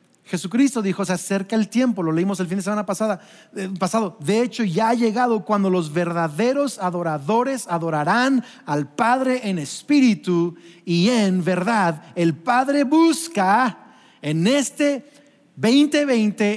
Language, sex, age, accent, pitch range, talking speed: Spanish, male, 40-59, Mexican, 170-245 Hz, 135 wpm